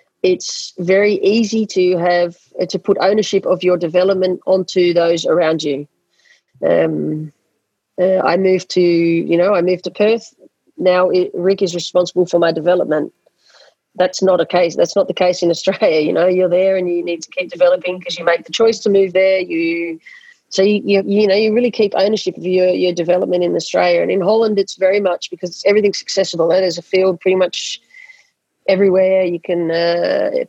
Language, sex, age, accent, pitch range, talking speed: English, female, 30-49, Australian, 175-200 Hz, 190 wpm